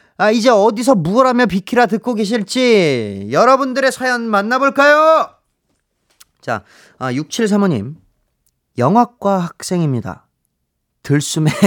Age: 30-49